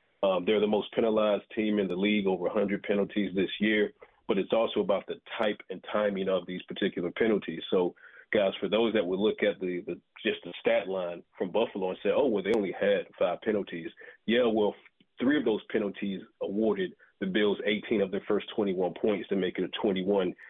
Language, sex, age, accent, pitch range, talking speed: English, male, 40-59, American, 95-110 Hz, 210 wpm